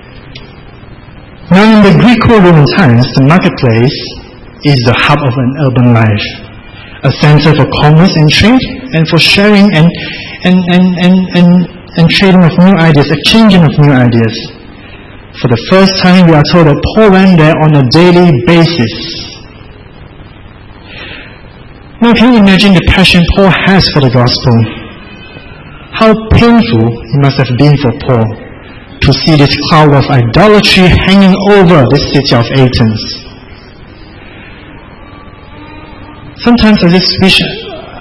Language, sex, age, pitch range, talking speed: English, male, 60-79, 115-175 Hz, 145 wpm